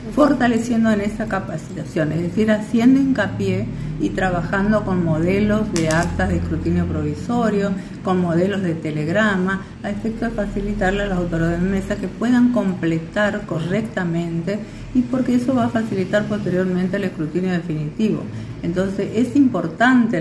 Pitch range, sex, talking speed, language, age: 160-205 Hz, female, 140 wpm, Spanish, 50-69